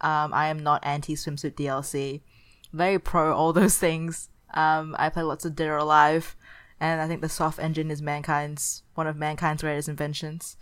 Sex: female